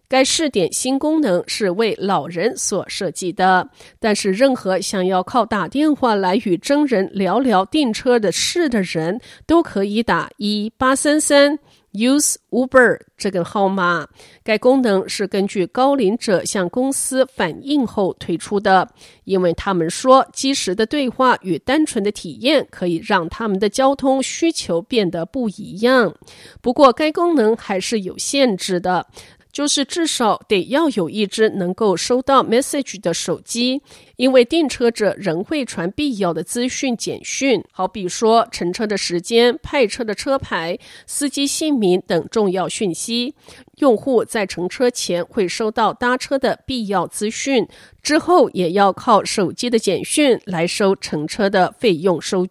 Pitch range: 190-265 Hz